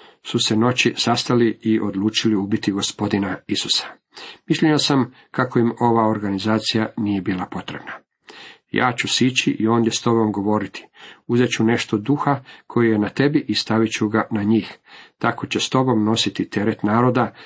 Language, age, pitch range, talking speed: Croatian, 50-69, 110-125 Hz, 160 wpm